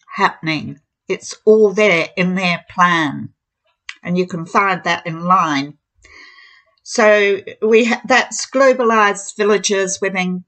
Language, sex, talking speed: English, female, 115 wpm